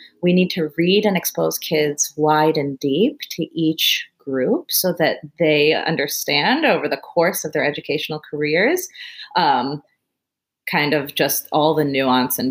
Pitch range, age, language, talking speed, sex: 150-210 Hz, 30-49, English, 150 wpm, female